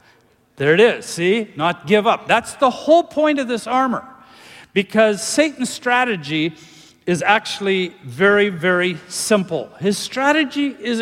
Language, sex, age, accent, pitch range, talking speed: English, male, 50-69, American, 175-250 Hz, 135 wpm